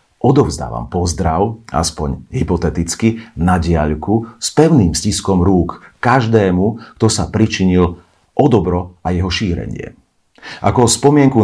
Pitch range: 85-110 Hz